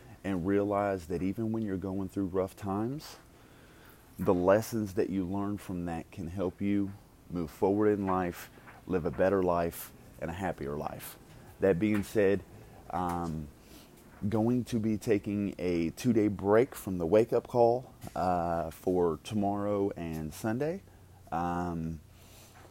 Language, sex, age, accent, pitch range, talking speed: English, male, 30-49, American, 90-110 Hz, 145 wpm